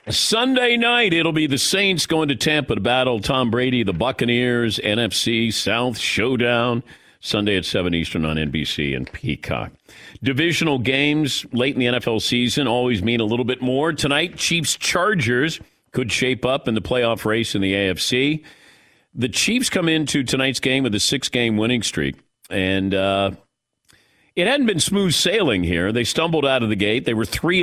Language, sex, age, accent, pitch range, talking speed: English, male, 50-69, American, 110-145 Hz, 175 wpm